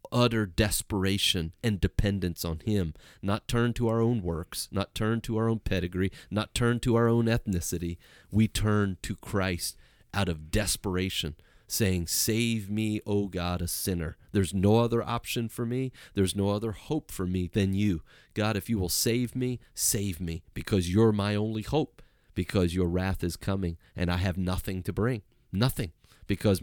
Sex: male